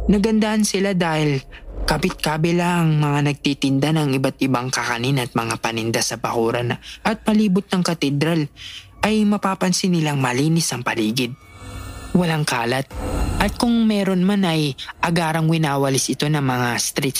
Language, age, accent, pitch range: English, 20-39, Filipino, 120-165 Hz